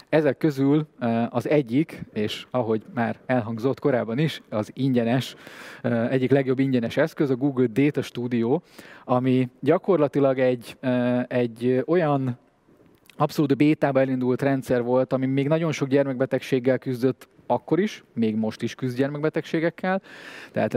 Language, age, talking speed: Hungarian, 20-39, 125 wpm